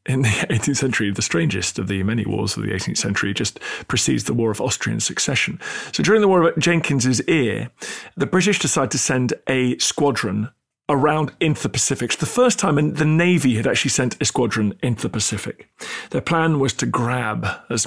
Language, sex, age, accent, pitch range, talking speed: English, male, 40-59, British, 110-145 Hz, 200 wpm